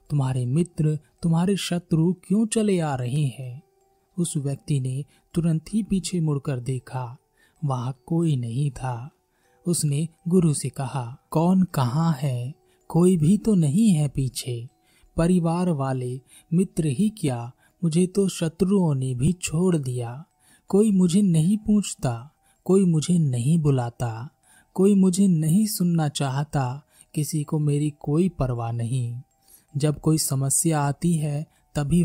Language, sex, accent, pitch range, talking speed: Hindi, male, native, 135-175 Hz, 135 wpm